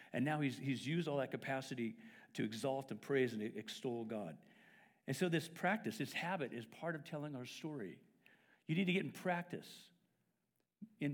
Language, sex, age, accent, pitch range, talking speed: English, male, 60-79, American, 130-180 Hz, 185 wpm